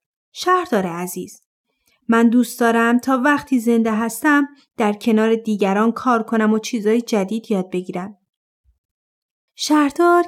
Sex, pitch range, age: female, 215-290 Hz, 30-49